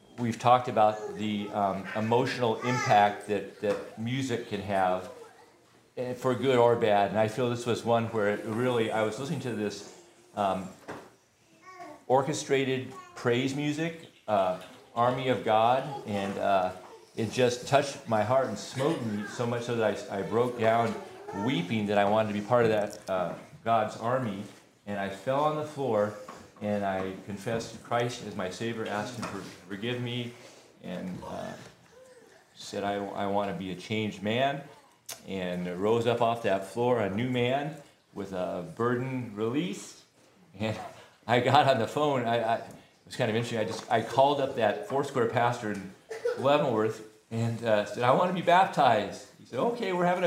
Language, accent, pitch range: English, American, 105-125 Hz